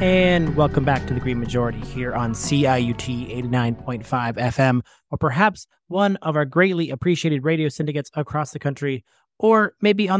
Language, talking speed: English, 160 wpm